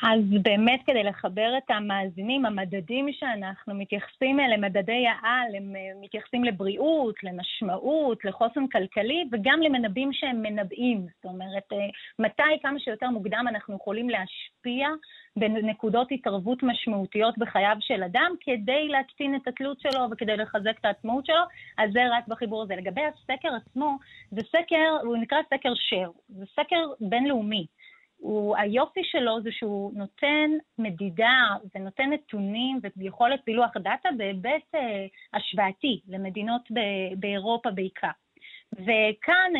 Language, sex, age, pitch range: Hebrew, female, 30-49, 205-270 Hz